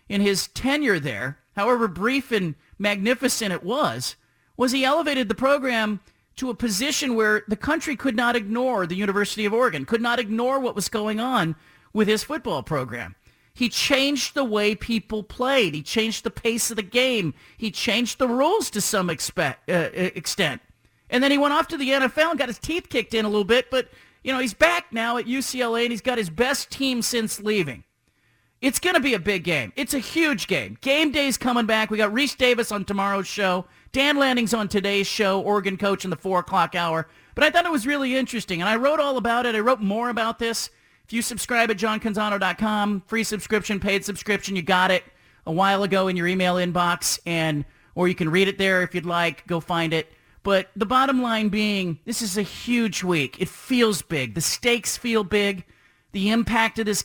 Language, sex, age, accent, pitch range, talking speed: English, male, 40-59, American, 190-250 Hz, 210 wpm